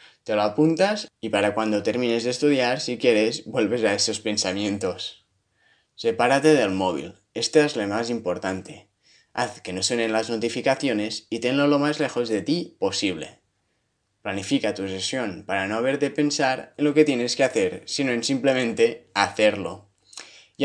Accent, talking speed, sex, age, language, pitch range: Spanish, 160 wpm, male, 20-39, Spanish, 105-140 Hz